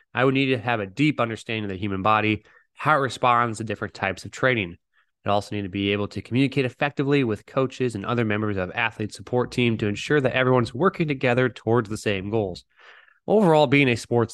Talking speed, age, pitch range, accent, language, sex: 220 wpm, 20-39, 110-140 Hz, American, English, male